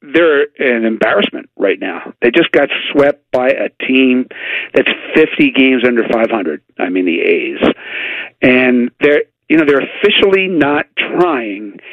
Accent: American